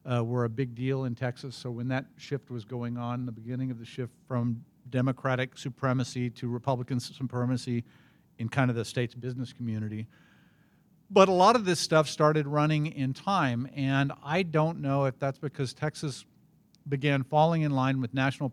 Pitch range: 125-155 Hz